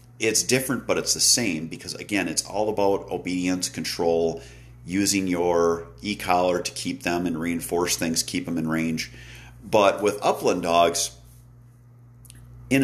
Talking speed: 145 wpm